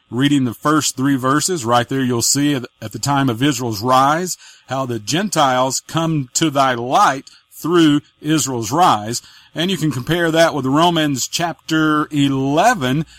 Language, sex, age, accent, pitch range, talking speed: English, male, 40-59, American, 135-165 Hz, 155 wpm